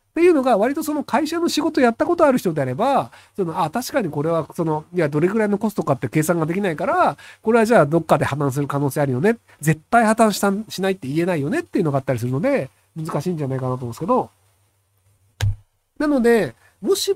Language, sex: Japanese, male